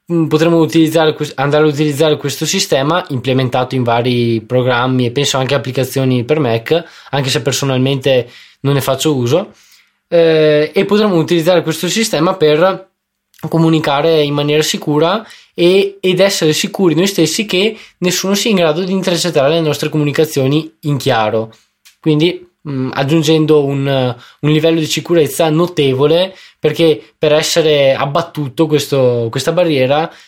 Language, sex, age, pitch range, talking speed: Italian, male, 20-39, 135-160 Hz, 135 wpm